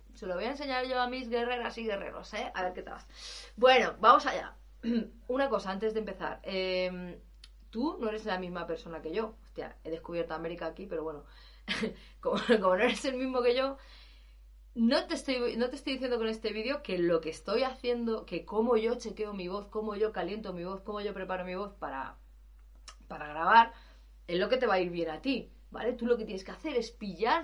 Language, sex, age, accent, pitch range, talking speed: Spanish, female, 30-49, Spanish, 185-250 Hz, 220 wpm